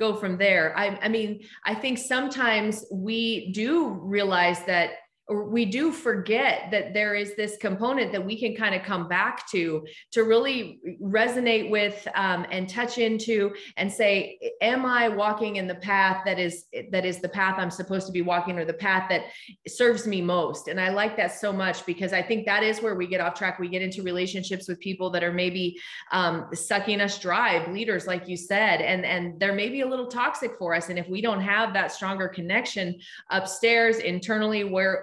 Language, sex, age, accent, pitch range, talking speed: English, female, 30-49, American, 185-220 Hz, 200 wpm